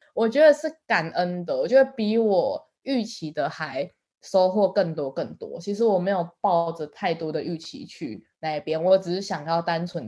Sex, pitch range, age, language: female, 170-220 Hz, 20-39, Chinese